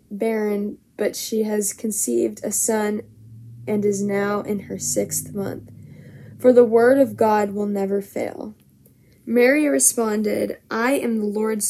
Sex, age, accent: female, 10-29, American